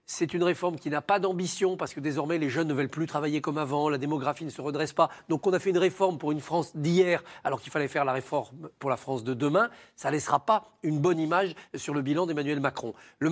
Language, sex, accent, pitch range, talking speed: French, male, French, 150-195 Hz, 260 wpm